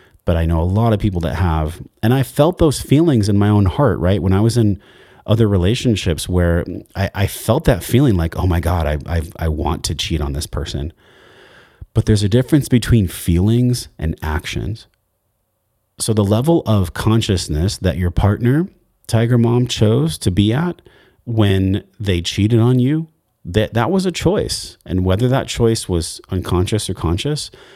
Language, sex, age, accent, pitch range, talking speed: English, male, 30-49, American, 90-120 Hz, 180 wpm